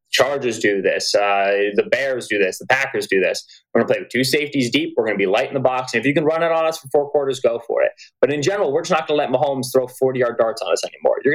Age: 20-39